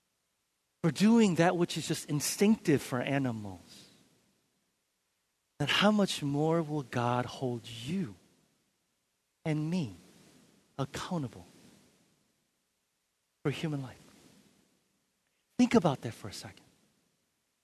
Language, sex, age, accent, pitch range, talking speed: English, male, 40-59, American, 150-230 Hz, 100 wpm